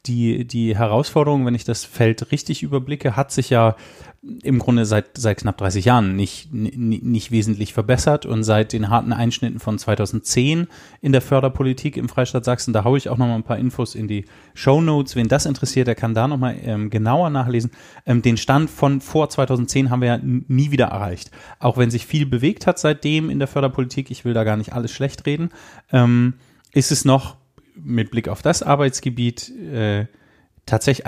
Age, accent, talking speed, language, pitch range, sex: 30-49, German, 195 wpm, German, 115-140 Hz, male